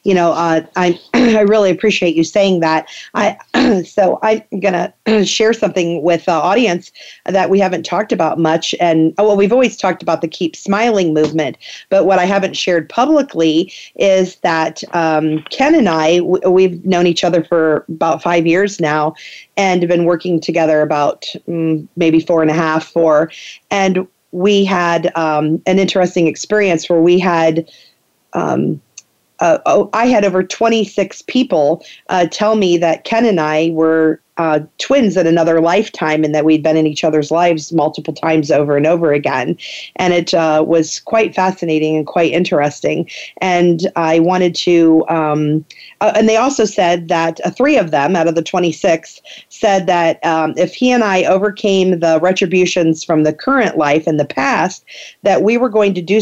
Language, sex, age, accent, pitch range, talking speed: English, female, 40-59, American, 160-190 Hz, 175 wpm